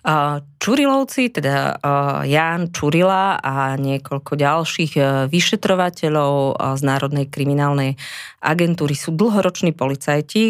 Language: Slovak